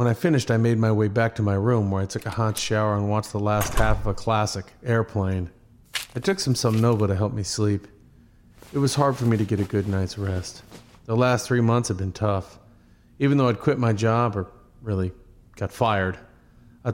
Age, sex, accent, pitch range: 40-59, male, American, 100-120 Hz